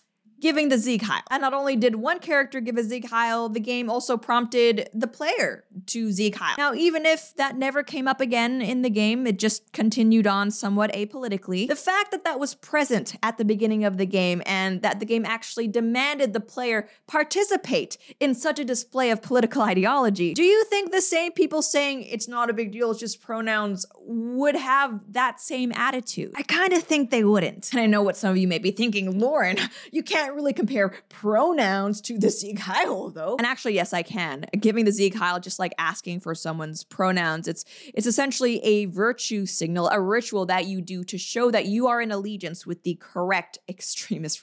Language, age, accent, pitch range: English, 20-39, American, 190-255 Hz